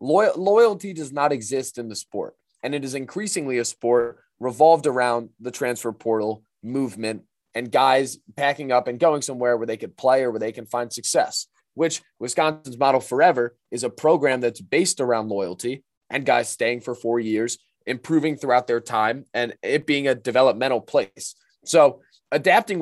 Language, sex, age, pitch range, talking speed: English, male, 20-39, 115-145 Hz, 175 wpm